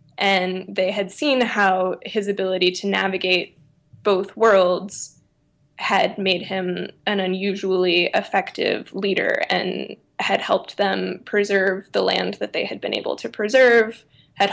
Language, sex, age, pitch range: English, female, 10-29, 185-210 Hz